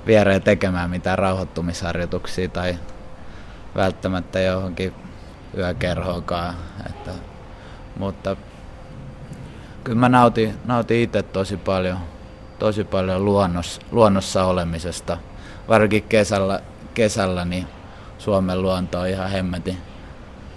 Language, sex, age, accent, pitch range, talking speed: Finnish, male, 20-39, native, 90-105 Hz, 85 wpm